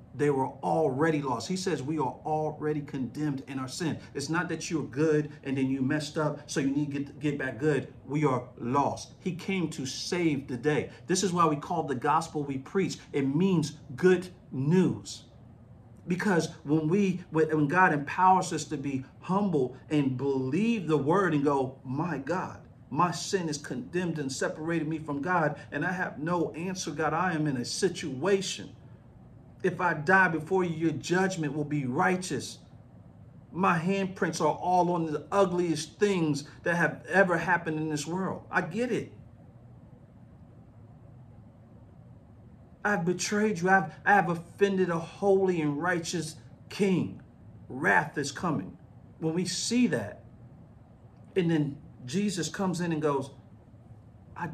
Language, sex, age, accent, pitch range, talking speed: English, male, 50-69, American, 140-180 Hz, 160 wpm